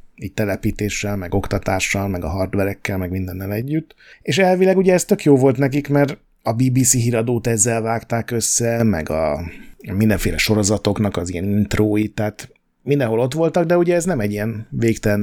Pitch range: 105-135 Hz